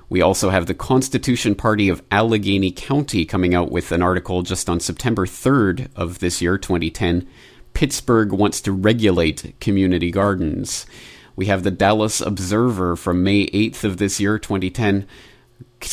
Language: English